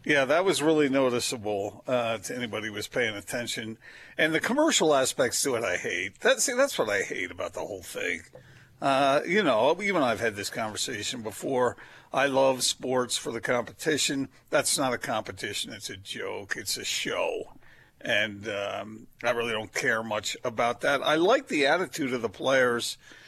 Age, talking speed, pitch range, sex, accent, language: 50-69, 185 wpm, 115-135 Hz, male, American, English